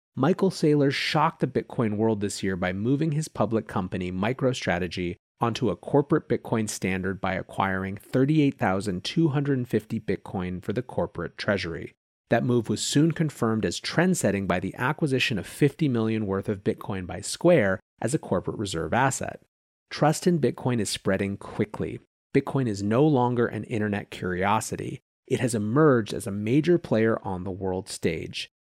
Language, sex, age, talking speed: English, male, 30-49, 155 wpm